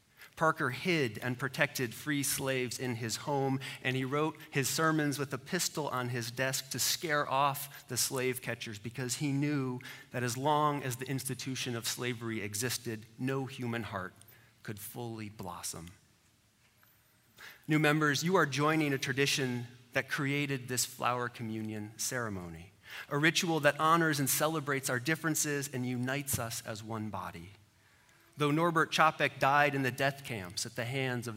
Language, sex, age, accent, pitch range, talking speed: English, male, 30-49, American, 115-145 Hz, 160 wpm